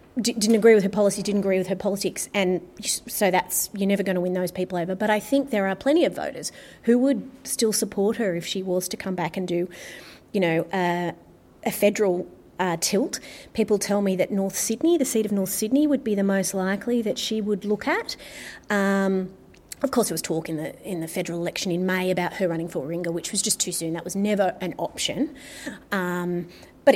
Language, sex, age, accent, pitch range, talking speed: English, female, 30-49, Australian, 180-215 Hz, 230 wpm